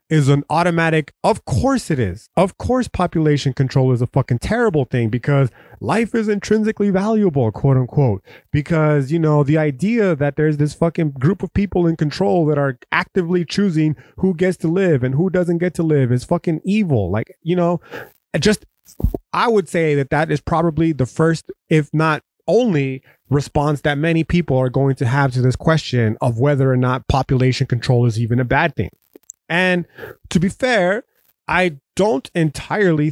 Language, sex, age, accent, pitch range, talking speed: English, male, 30-49, American, 135-175 Hz, 180 wpm